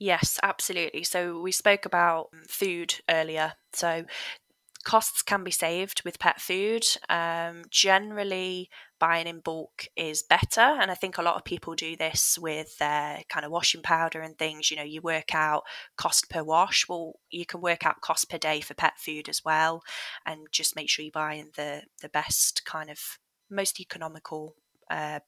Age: 20-39